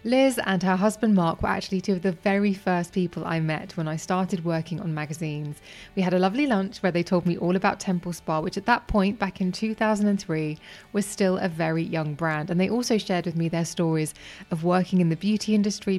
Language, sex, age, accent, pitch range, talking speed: English, female, 20-39, British, 165-205 Hz, 230 wpm